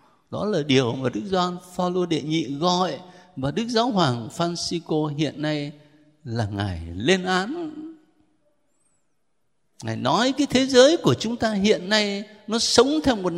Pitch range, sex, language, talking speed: 145-245 Hz, male, Vietnamese, 155 wpm